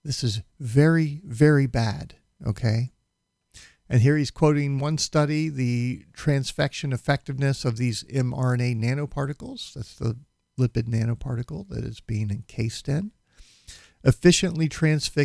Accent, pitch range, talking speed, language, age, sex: American, 115-145 Hz, 115 wpm, English, 50-69, male